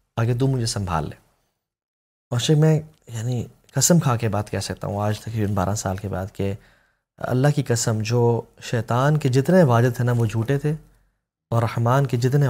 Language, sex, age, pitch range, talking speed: Urdu, male, 20-39, 115-160 Hz, 190 wpm